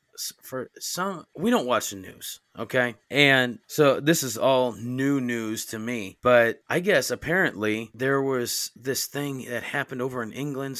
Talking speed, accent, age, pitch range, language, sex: 165 wpm, American, 30-49, 115-150 Hz, English, male